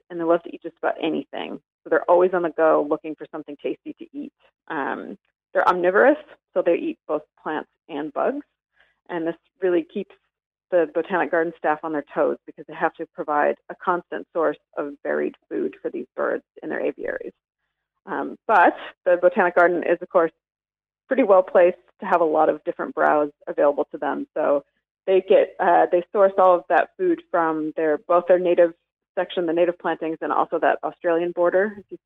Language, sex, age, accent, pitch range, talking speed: English, female, 30-49, American, 160-185 Hz, 195 wpm